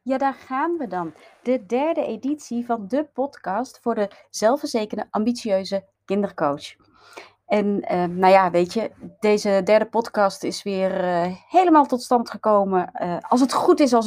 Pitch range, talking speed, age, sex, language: 190-255 Hz, 160 wpm, 30-49, female, Dutch